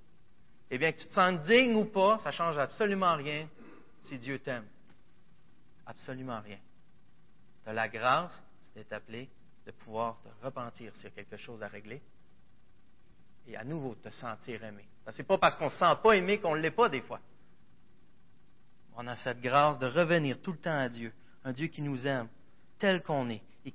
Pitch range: 115-145 Hz